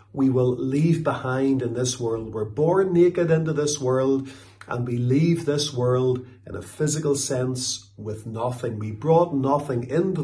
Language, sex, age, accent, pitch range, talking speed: English, male, 50-69, Irish, 115-150 Hz, 165 wpm